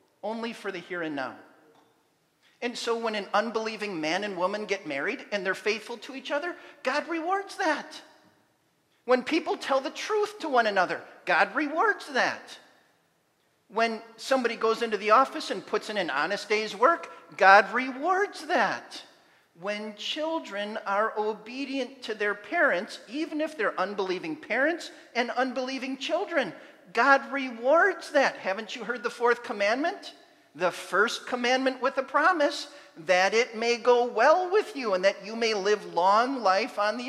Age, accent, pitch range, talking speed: 40-59, American, 205-295 Hz, 160 wpm